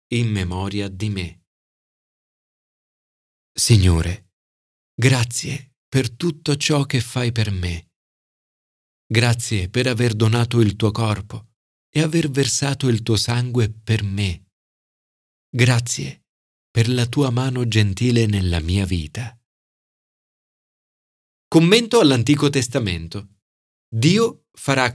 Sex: male